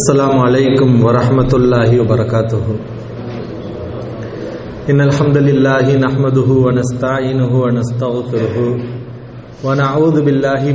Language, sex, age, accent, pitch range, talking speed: English, male, 40-59, Indian, 130-160 Hz, 90 wpm